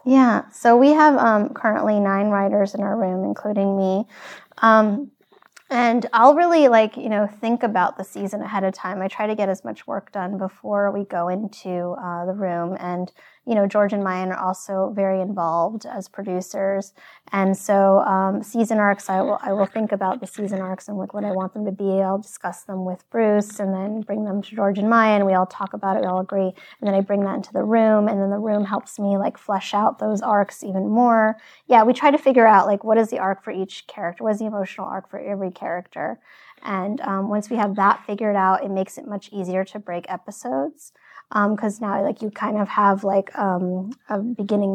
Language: English